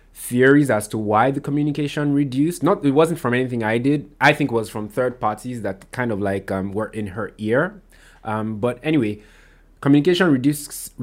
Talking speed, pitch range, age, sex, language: 190 wpm, 110-140 Hz, 20-39, male, English